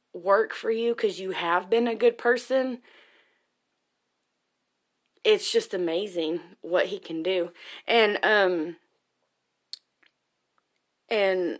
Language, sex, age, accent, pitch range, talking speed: English, female, 20-39, American, 185-230 Hz, 105 wpm